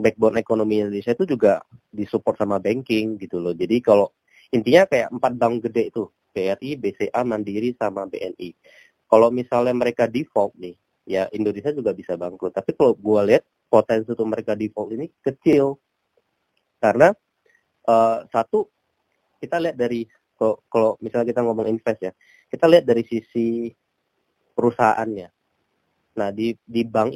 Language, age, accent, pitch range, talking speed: Indonesian, 20-39, native, 105-120 Hz, 145 wpm